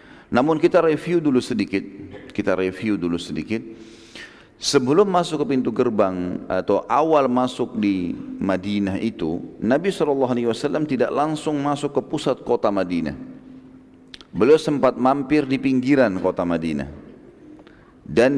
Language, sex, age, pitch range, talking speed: Indonesian, male, 40-59, 95-140 Hz, 120 wpm